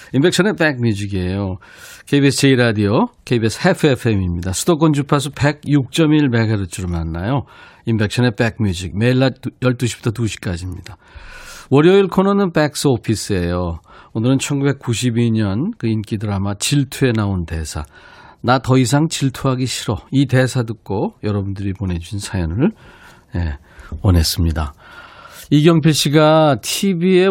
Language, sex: Korean, male